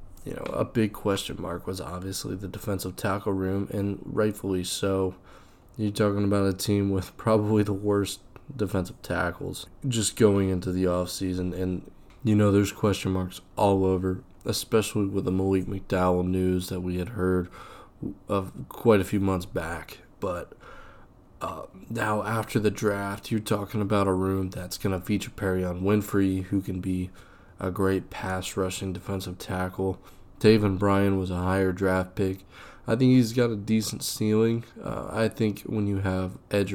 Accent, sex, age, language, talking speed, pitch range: American, male, 20-39, English, 165 wpm, 95-105 Hz